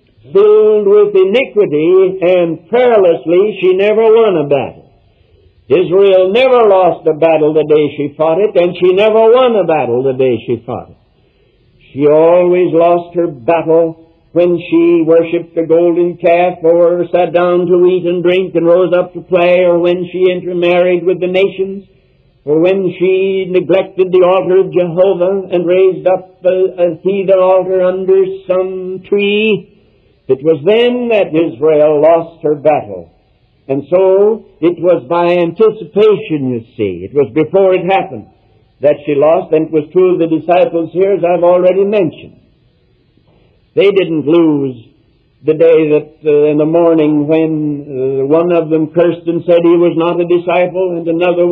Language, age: English, 60-79